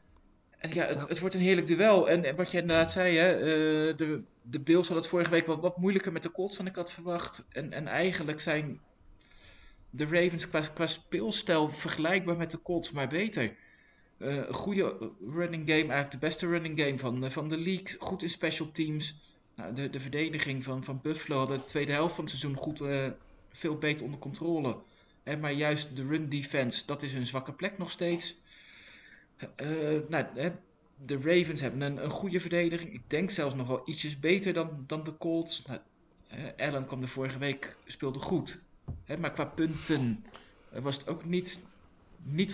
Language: Dutch